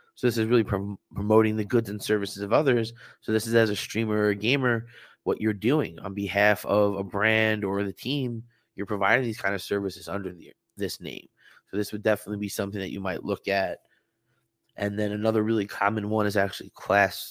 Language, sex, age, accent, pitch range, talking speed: English, male, 20-39, American, 100-110 Hz, 210 wpm